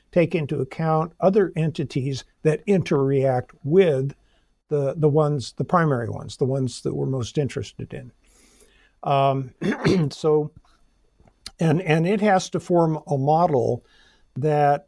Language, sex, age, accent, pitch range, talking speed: English, male, 60-79, American, 140-180 Hz, 130 wpm